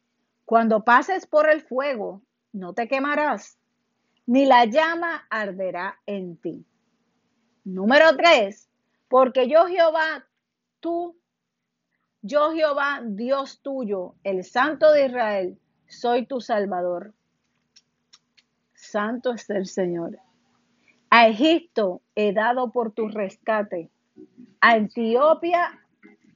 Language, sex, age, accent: Spanish, female, 50-69, American